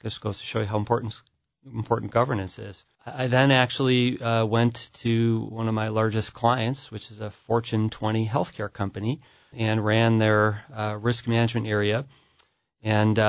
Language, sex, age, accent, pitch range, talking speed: English, male, 40-59, American, 105-120 Hz, 165 wpm